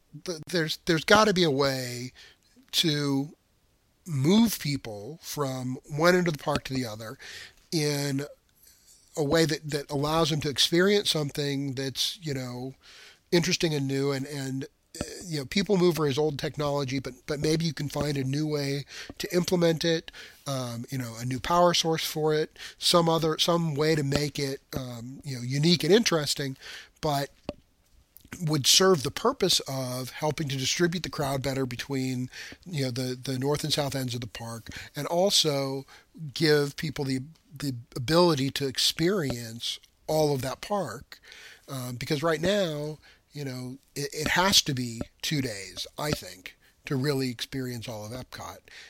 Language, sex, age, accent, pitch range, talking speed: English, male, 40-59, American, 135-165 Hz, 165 wpm